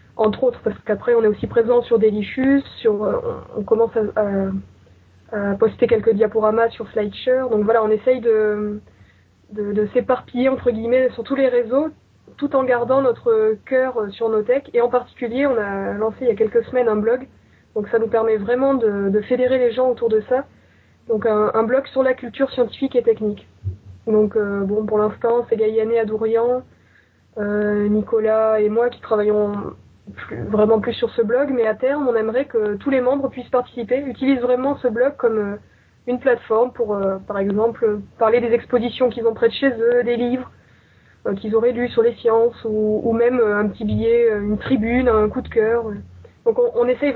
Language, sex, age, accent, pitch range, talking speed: French, female, 20-39, French, 215-250 Hz, 200 wpm